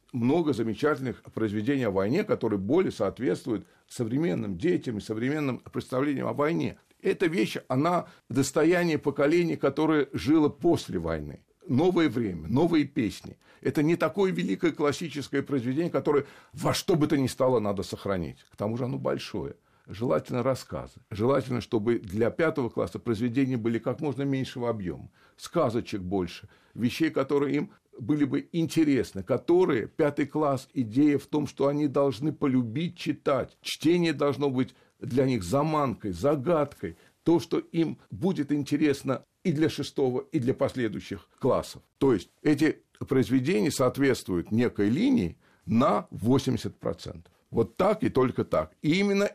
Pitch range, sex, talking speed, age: 120-150 Hz, male, 140 wpm, 60-79